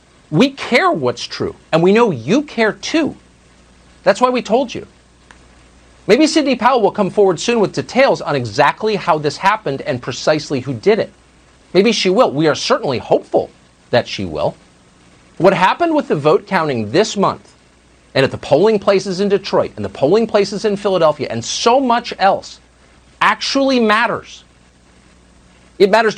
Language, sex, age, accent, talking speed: English, male, 50-69, American, 165 wpm